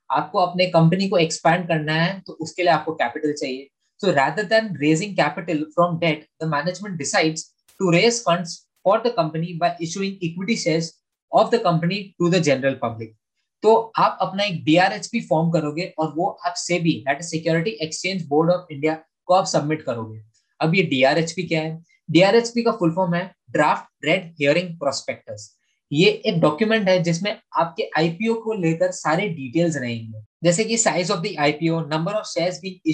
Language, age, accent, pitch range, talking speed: Hindi, 20-39, native, 155-190 Hz, 145 wpm